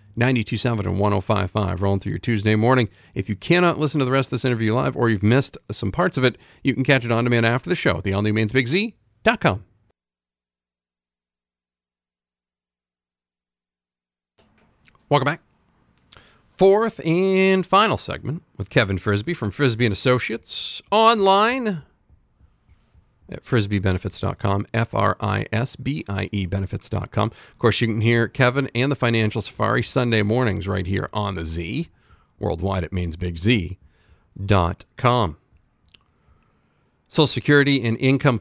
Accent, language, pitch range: American, English, 95-130 Hz